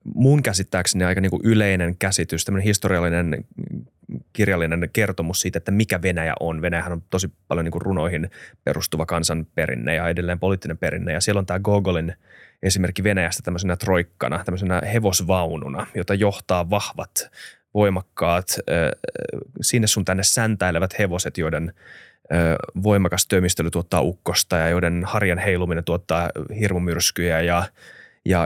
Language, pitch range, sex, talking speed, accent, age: Finnish, 85-105 Hz, male, 125 wpm, native, 30-49